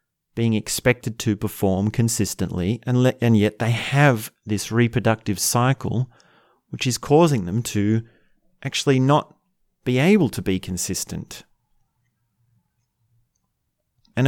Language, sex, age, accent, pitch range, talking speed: English, male, 30-49, Australian, 105-130 Hz, 110 wpm